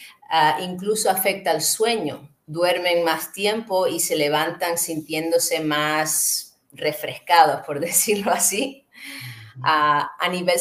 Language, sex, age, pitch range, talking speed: Spanish, female, 30-49, 150-180 Hz, 115 wpm